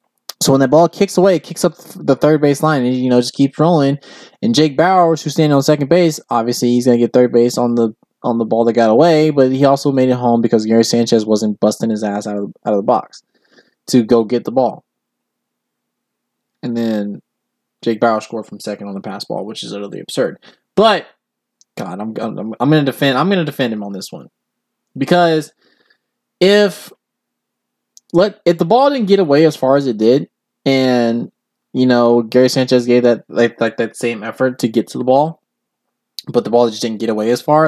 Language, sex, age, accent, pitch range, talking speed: English, male, 20-39, American, 115-150 Hz, 220 wpm